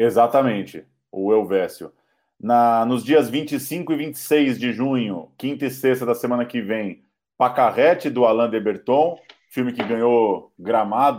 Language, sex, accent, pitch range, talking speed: Portuguese, male, Brazilian, 110-140 Hz, 140 wpm